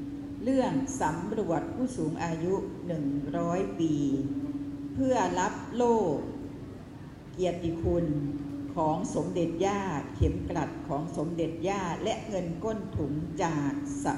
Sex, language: female, Thai